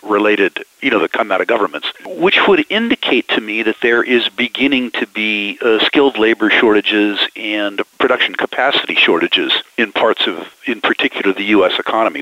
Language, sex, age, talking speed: English, male, 50-69, 170 wpm